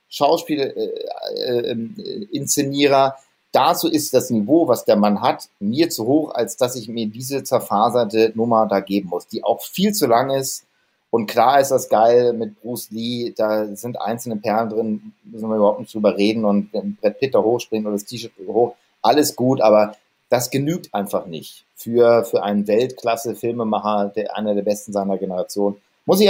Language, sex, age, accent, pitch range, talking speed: German, male, 40-59, German, 110-135 Hz, 175 wpm